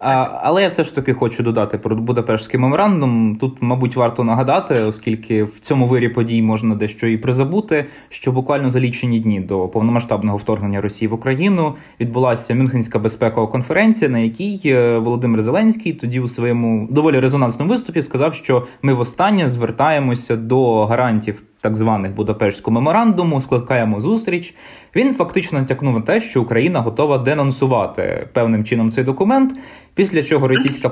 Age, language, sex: 20-39, Ukrainian, male